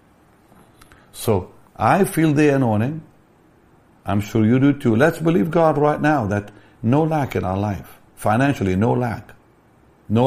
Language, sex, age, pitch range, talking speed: English, male, 60-79, 95-120 Hz, 145 wpm